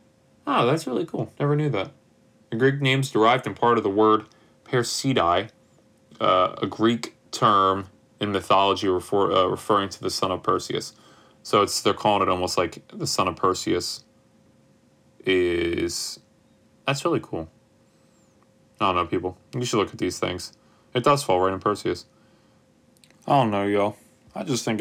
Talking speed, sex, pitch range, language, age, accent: 165 wpm, male, 100-135 Hz, English, 20-39, American